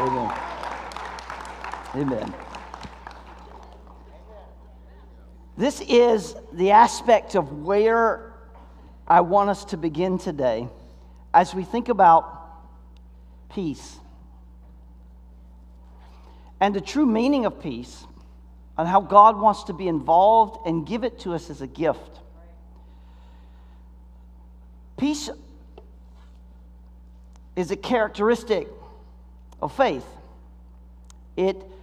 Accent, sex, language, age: American, male, English, 50-69